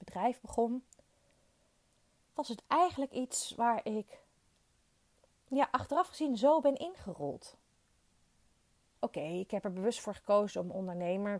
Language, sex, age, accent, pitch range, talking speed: Dutch, female, 30-49, Dutch, 195-270 Hz, 125 wpm